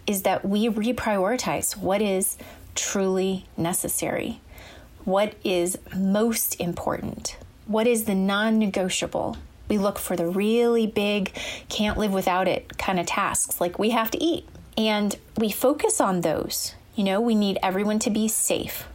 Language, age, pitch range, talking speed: English, 30-49, 180-230 Hz, 150 wpm